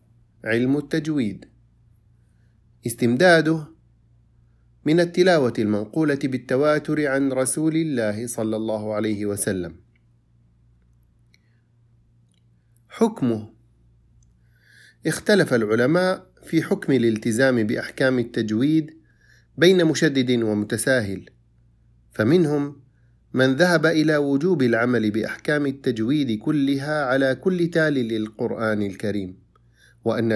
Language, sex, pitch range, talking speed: Arabic, male, 110-140 Hz, 80 wpm